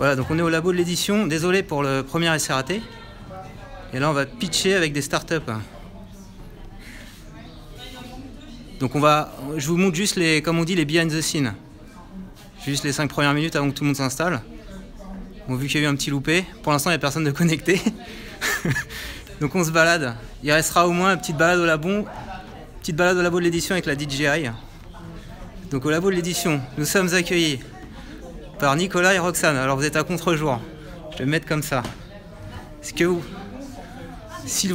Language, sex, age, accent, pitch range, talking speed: French, male, 30-49, French, 135-180 Hz, 200 wpm